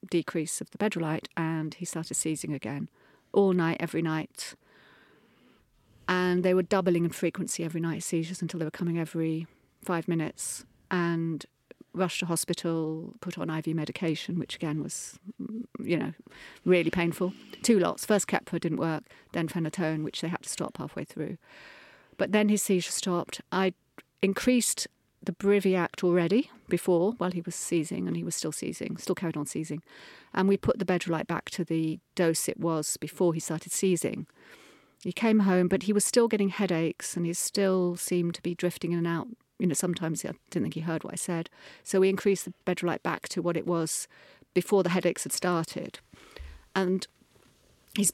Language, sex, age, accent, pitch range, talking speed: English, female, 40-59, British, 165-190 Hz, 180 wpm